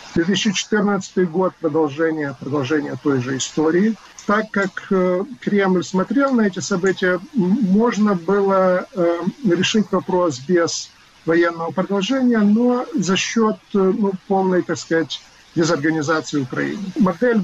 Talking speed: 110 wpm